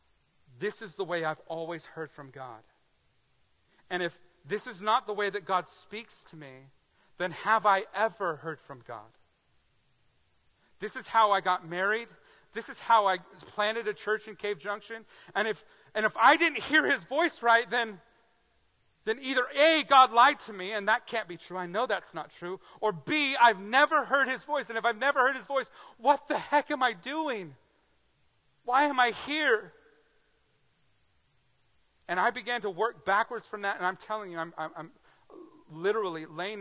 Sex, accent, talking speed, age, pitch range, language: male, American, 185 wpm, 40-59, 155-225 Hz, English